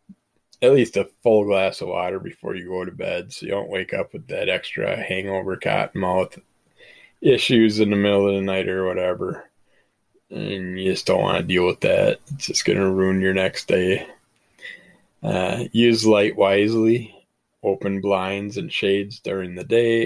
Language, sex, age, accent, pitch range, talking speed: English, male, 20-39, American, 95-120 Hz, 175 wpm